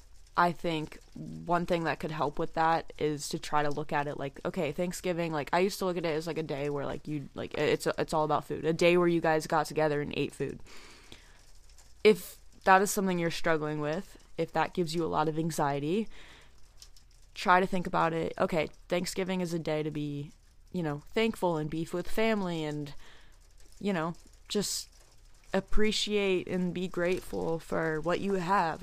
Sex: female